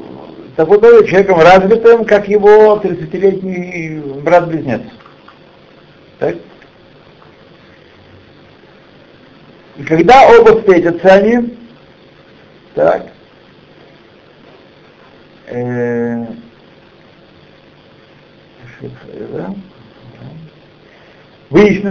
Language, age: Russian, 60-79